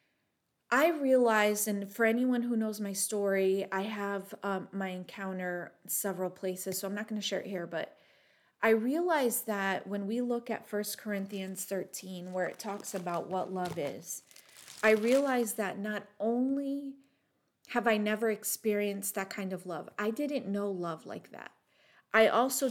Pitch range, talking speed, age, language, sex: 195-235 Hz, 165 wpm, 30-49, English, female